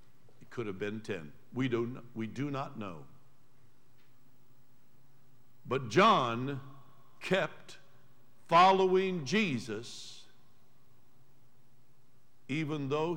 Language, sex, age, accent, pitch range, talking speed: English, male, 60-79, American, 125-150 Hz, 70 wpm